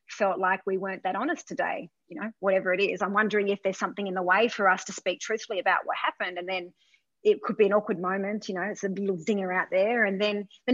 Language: English